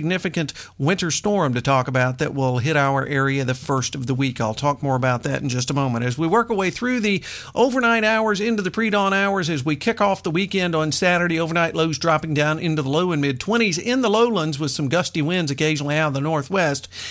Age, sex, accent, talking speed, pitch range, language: 50-69, male, American, 240 wpm, 145-195 Hz, English